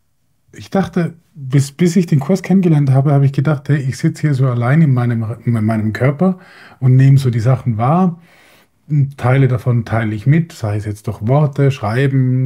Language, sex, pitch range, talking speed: German, male, 120-160 Hz, 195 wpm